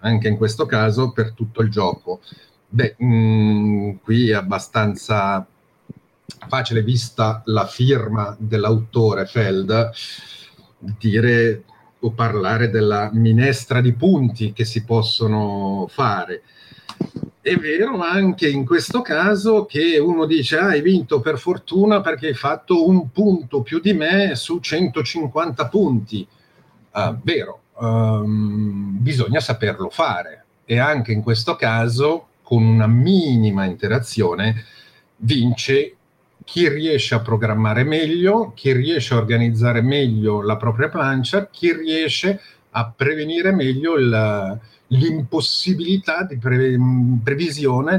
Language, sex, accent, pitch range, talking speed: Italian, male, native, 110-155 Hz, 115 wpm